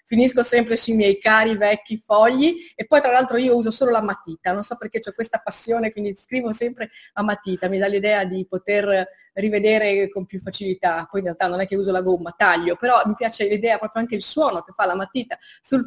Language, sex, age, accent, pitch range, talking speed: Italian, female, 30-49, native, 185-225 Hz, 225 wpm